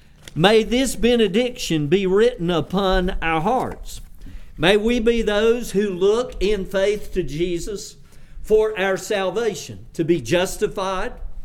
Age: 50-69